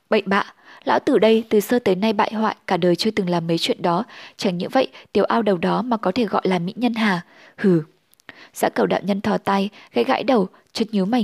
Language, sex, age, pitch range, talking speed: Vietnamese, female, 10-29, 185-230 Hz, 250 wpm